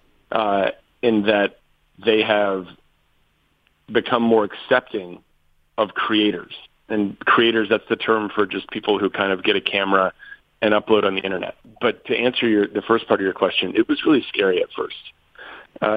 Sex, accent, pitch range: male, American, 100-115 Hz